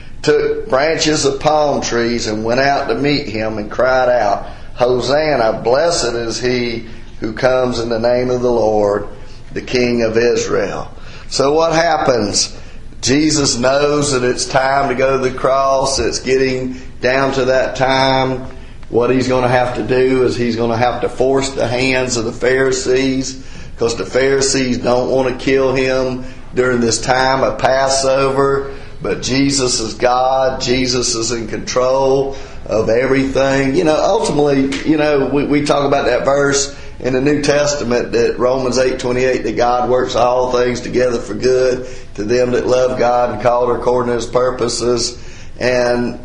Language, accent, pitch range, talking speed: English, American, 120-135 Hz, 175 wpm